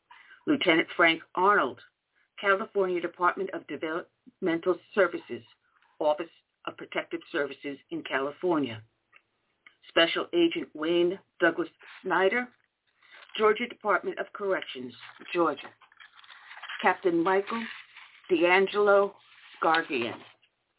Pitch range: 160-200 Hz